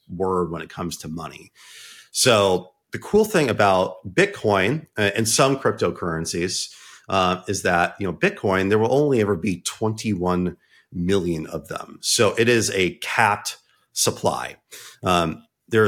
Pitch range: 95-130 Hz